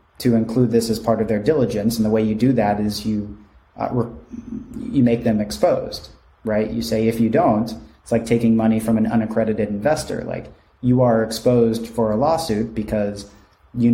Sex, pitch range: male, 105-115 Hz